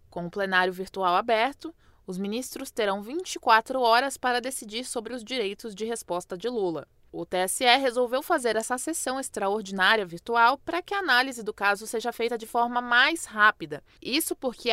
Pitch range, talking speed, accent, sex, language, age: 195-295 Hz, 165 wpm, Brazilian, female, English, 20-39